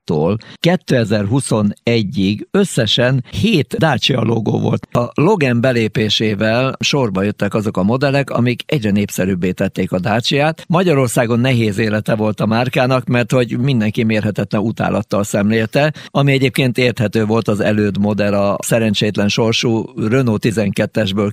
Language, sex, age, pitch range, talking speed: Hungarian, male, 50-69, 110-140 Hz, 125 wpm